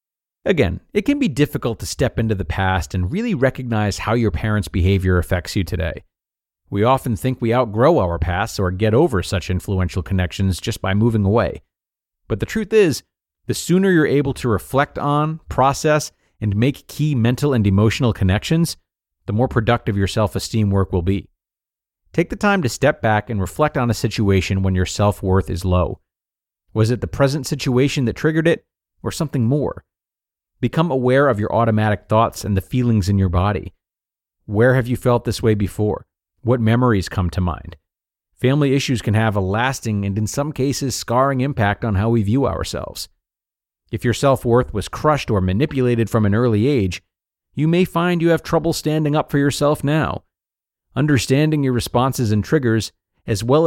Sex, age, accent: male, 40-59, American